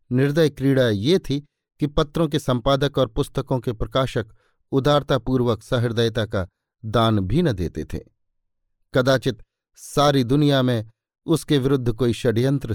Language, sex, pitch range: Hindi, male, 110-150 Hz